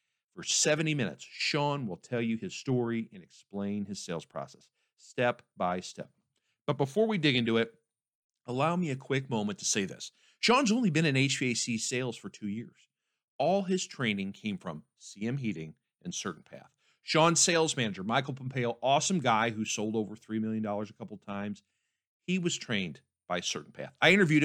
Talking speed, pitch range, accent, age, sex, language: 180 wpm, 105-145 Hz, American, 50-69, male, English